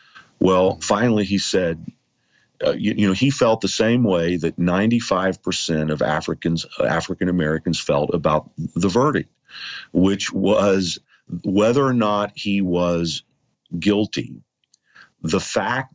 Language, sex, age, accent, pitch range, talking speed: English, male, 50-69, American, 85-105 Hz, 120 wpm